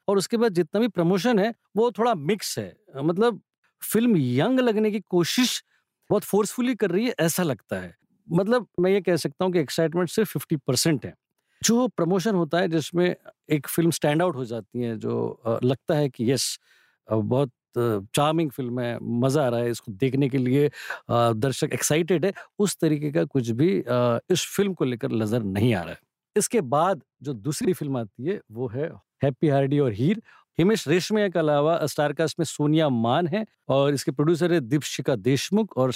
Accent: native